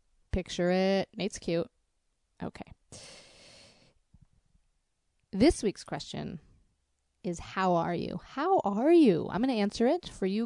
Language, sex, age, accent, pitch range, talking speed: English, female, 30-49, American, 180-220 Hz, 125 wpm